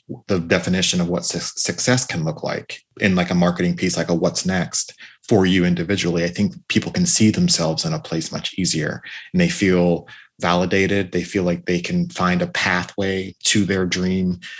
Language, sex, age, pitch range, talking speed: English, male, 30-49, 90-115 Hz, 190 wpm